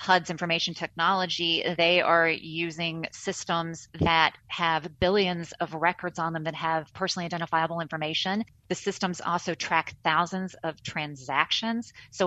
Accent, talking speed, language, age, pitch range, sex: American, 130 wpm, English, 30-49, 155-175 Hz, female